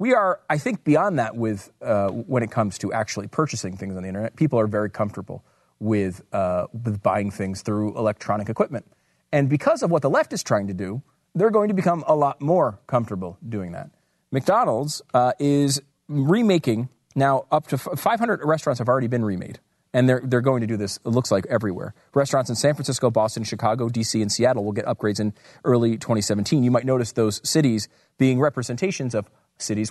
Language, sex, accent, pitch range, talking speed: English, male, American, 110-155 Hz, 200 wpm